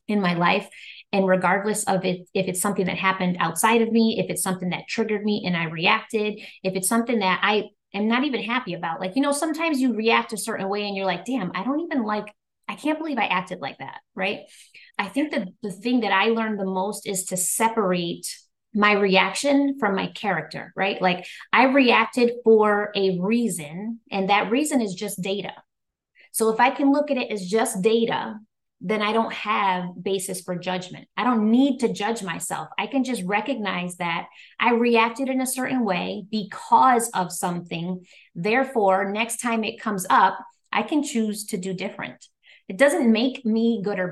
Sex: female